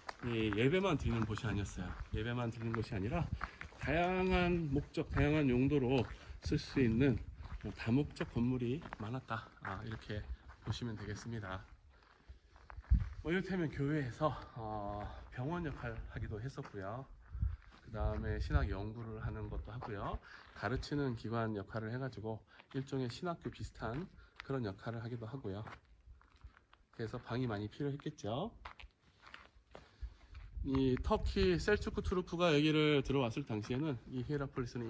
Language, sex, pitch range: Korean, male, 100-135 Hz